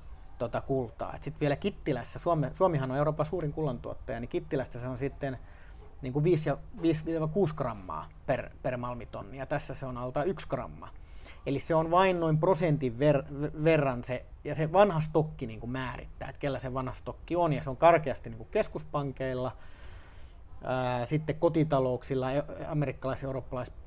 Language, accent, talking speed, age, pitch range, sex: Finnish, native, 150 wpm, 30-49, 120-150 Hz, male